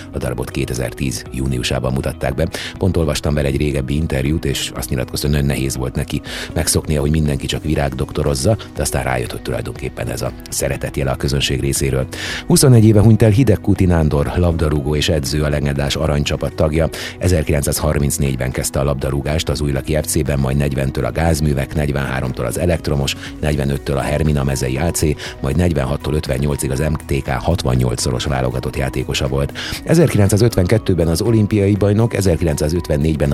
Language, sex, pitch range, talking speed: Hungarian, male, 70-85 Hz, 150 wpm